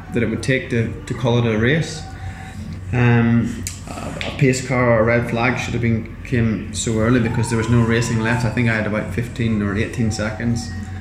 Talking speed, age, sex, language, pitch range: 220 wpm, 20-39, male, English, 100-120 Hz